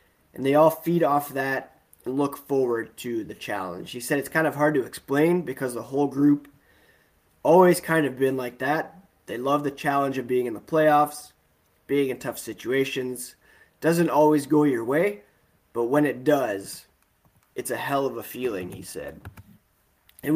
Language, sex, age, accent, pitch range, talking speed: English, male, 20-39, American, 110-145 Hz, 180 wpm